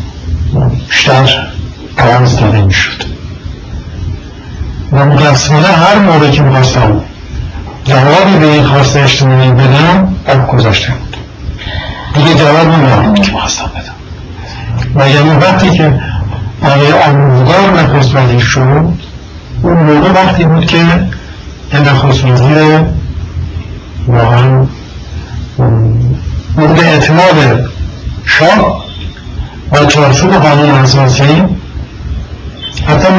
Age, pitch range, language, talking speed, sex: 60-79, 100-150 Hz, Persian, 75 wpm, male